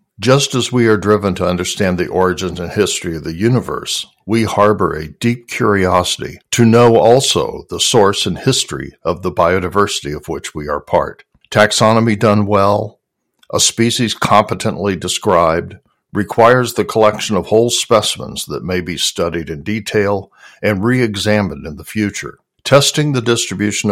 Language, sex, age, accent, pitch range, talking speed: English, male, 60-79, American, 90-115 Hz, 155 wpm